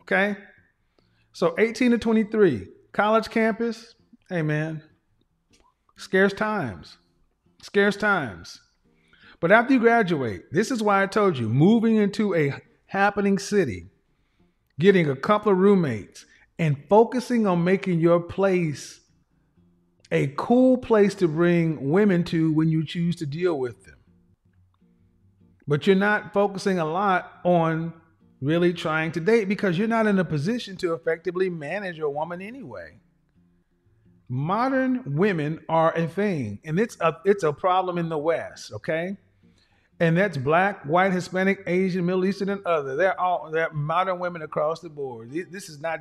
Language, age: English, 40-59